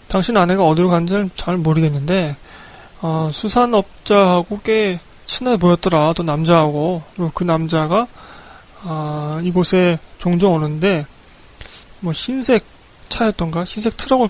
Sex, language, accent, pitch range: male, Korean, native, 160-200 Hz